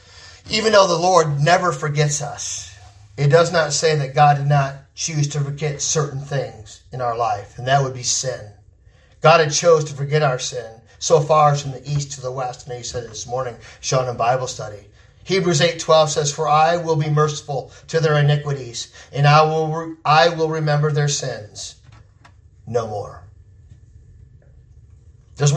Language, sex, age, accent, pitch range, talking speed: English, male, 40-59, American, 115-160 Hz, 175 wpm